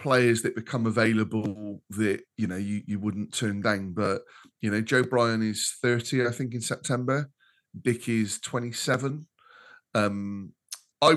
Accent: British